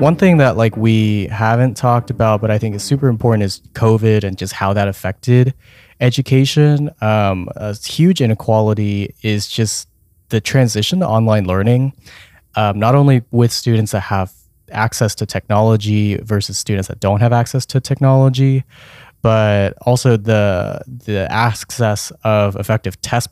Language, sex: English, male